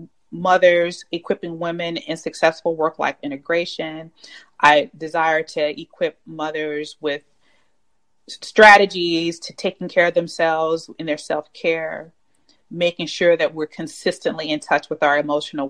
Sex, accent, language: female, American, English